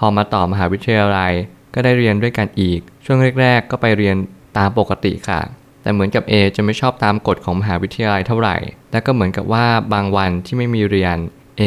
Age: 20-39